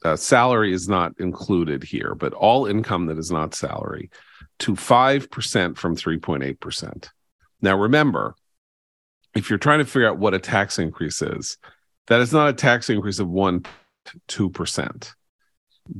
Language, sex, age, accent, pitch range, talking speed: English, male, 40-59, American, 85-115 Hz, 145 wpm